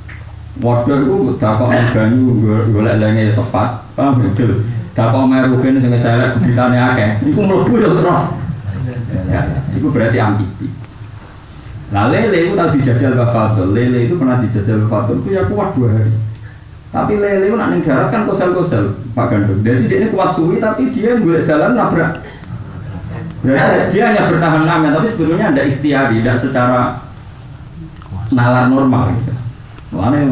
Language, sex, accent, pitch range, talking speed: Indonesian, male, native, 105-130 Hz, 145 wpm